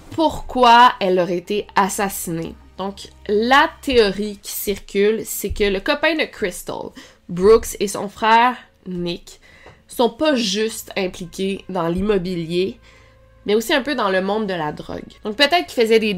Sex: female